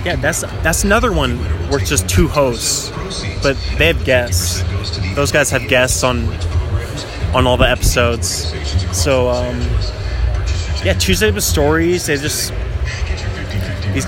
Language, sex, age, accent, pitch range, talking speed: English, male, 20-39, American, 90-135 Hz, 135 wpm